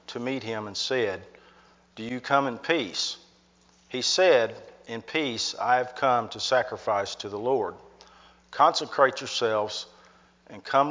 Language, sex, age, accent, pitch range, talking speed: English, male, 50-69, American, 105-140 Hz, 145 wpm